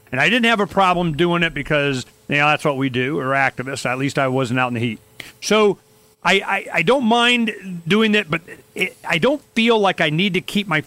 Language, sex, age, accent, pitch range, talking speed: English, male, 40-59, American, 145-220 Hz, 245 wpm